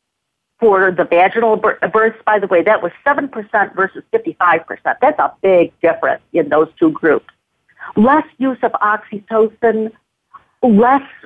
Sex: female